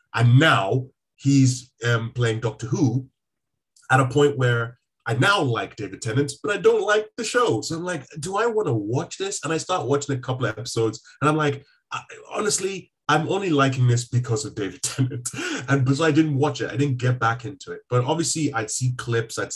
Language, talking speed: English, 210 wpm